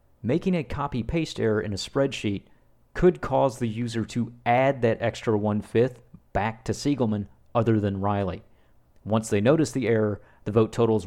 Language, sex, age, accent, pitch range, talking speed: English, male, 40-59, American, 95-125 Hz, 165 wpm